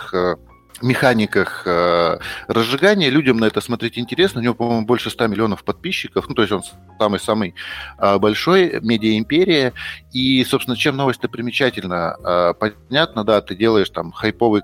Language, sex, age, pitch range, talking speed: Russian, male, 30-49, 95-115 Hz, 130 wpm